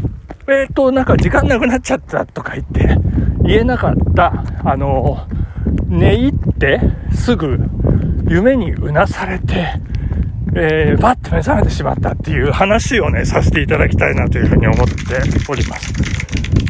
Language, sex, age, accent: Japanese, male, 60-79, native